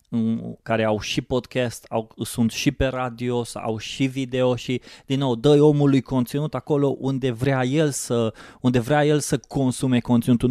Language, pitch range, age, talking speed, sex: Romanian, 120-140 Hz, 20-39, 170 wpm, male